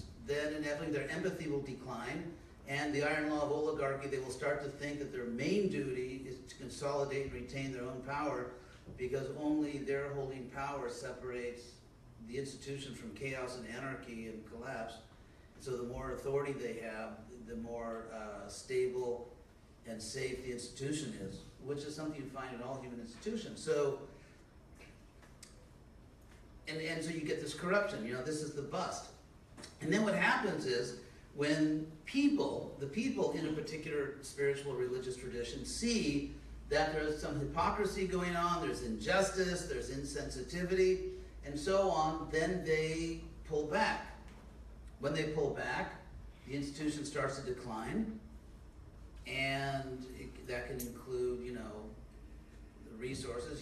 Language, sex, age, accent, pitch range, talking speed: English, male, 50-69, American, 120-150 Hz, 145 wpm